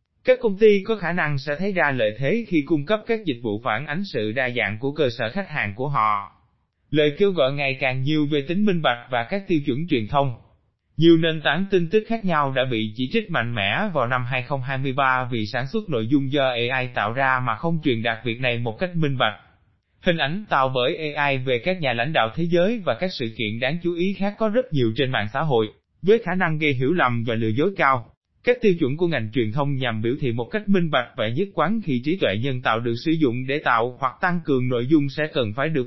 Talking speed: 255 wpm